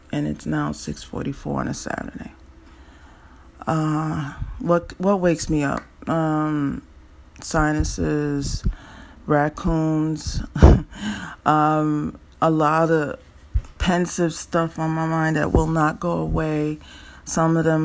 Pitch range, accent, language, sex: 140-175 Hz, American, English, female